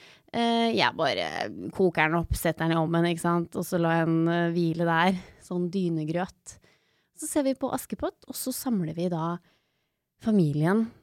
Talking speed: 160 wpm